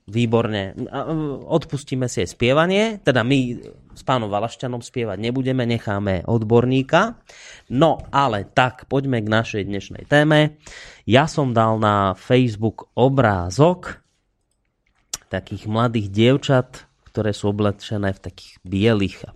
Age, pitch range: 20-39, 100-125 Hz